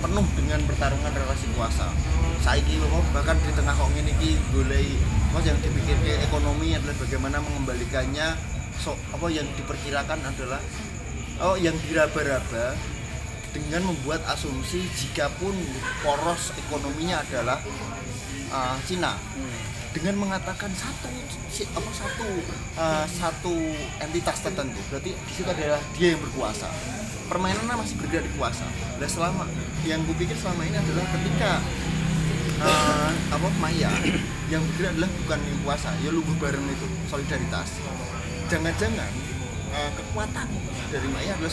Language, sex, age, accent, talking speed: Indonesian, male, 20-39, native, 125 wpm